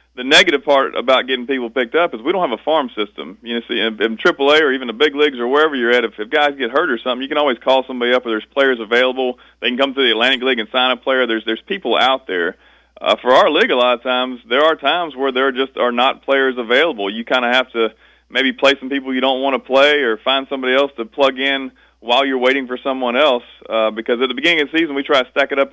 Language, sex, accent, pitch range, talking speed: English, male, American, 115-135 Hz, 285 wpm